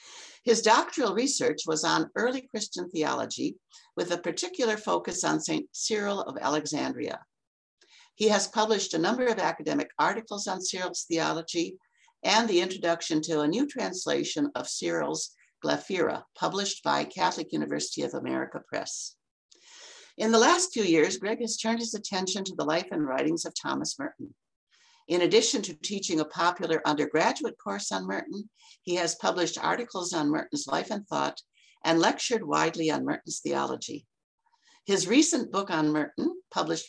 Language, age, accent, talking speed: English, 60-79, American, 155 wpm